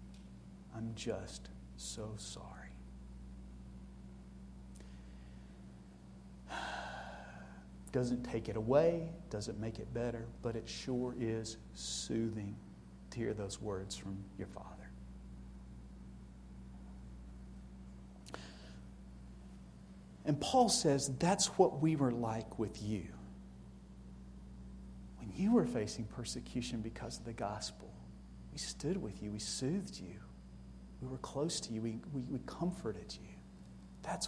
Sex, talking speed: male, 105 wpm